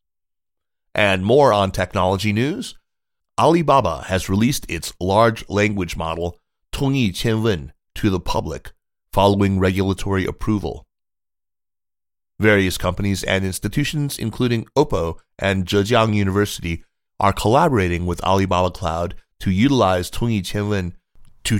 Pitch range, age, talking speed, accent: 90-110 Hz, 30-49, 110 wpm, American